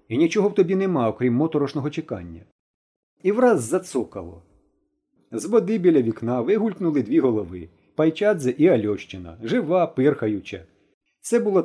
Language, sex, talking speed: Ukrainian, male, 135 wpm